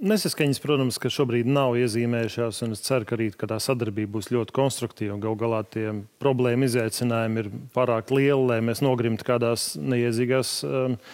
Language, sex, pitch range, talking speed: English, male, 120-140 Hz, 150 wpm